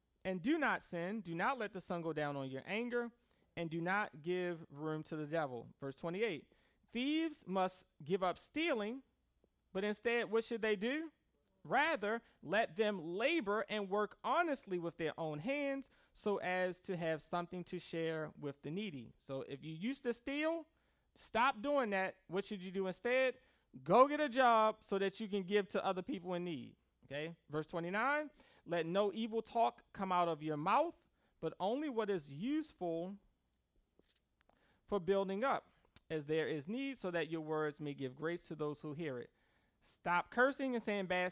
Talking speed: 180 wpm